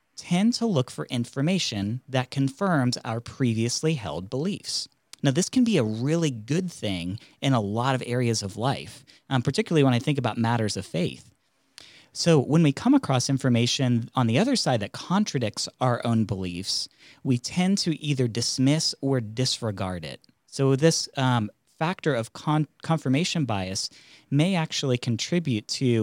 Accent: American